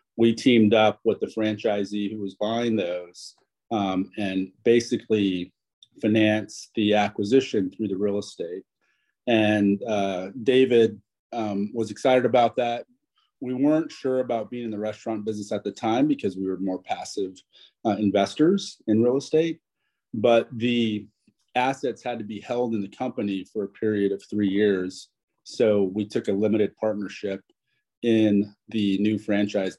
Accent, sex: American, male